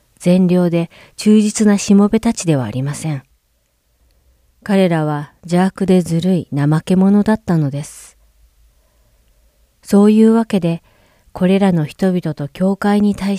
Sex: female